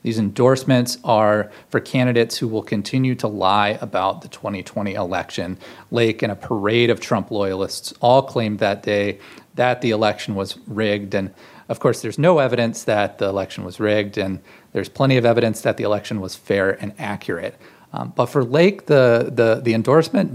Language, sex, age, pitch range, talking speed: English, male, 30-49, 105-125 Hz, 180 wpm